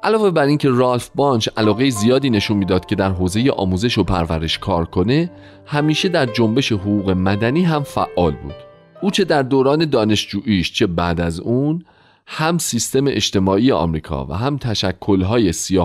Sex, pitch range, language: male, 90-135 Hz, Persian